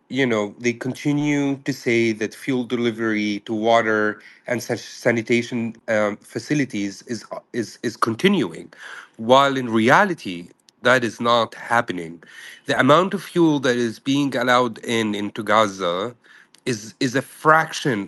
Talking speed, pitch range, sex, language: 140 wpm, 110-130 Hz, male, English